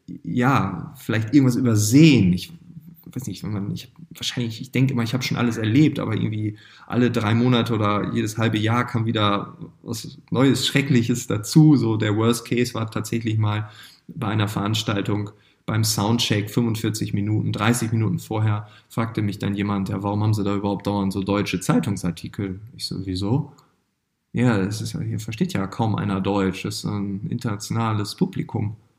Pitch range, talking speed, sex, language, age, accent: 100-135 Hz, 165 wpm, male, German, 20-39, German